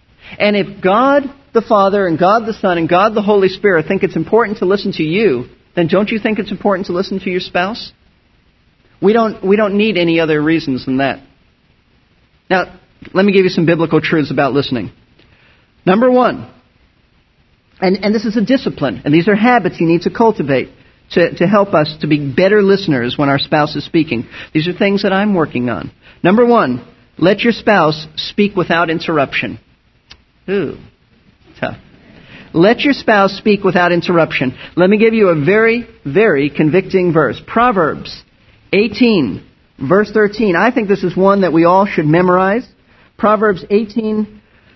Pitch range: 155-210 Hz